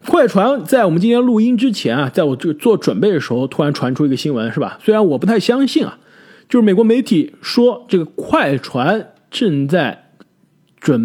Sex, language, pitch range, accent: male, Chinese, 145-215 Hz, native